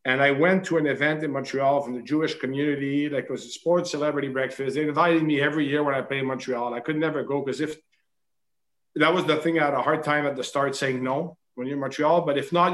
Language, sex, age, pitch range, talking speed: English, male, 50-69, 130-155 Hz, 270 wpm